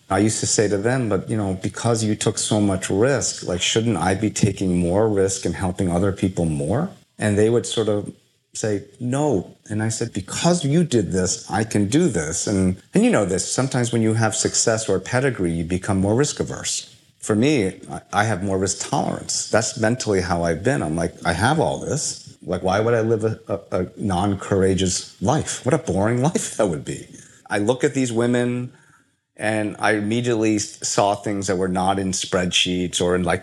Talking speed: 205 wpm